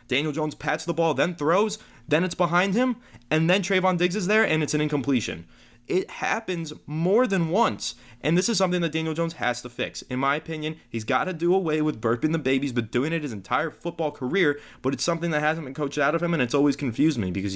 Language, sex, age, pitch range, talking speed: English, male, 20-39, 135-180 Hz, 245 wpm